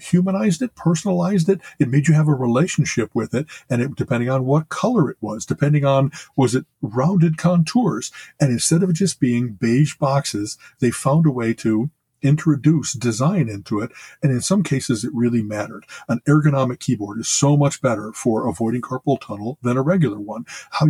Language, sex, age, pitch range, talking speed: English, male, 50-69, 115-155 Hz, 190 wpm